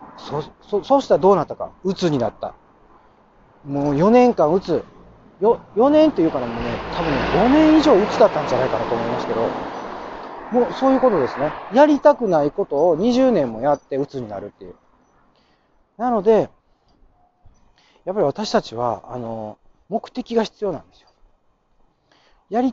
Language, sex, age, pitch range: Japanese, male, 40-59, 150-245 Hz